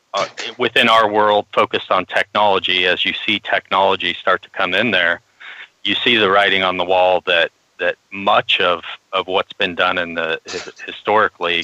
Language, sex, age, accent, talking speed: English, male, 30-49, American, 170 wpm